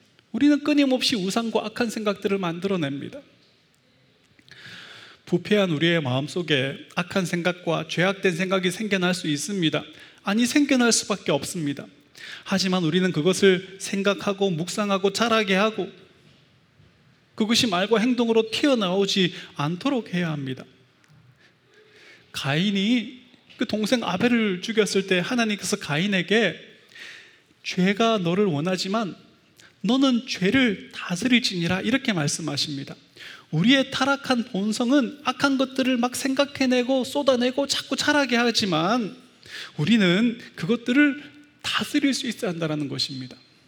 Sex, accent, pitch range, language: male, native, 175-235 Hz, Korean